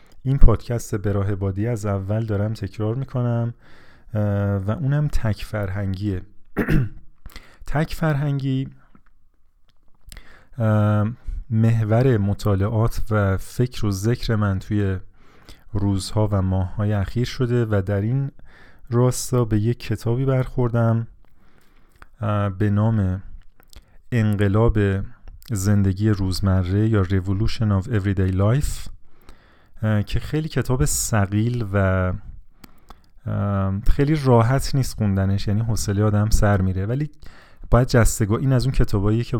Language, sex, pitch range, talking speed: Persian, male, 100-120 Hz, 105 wpm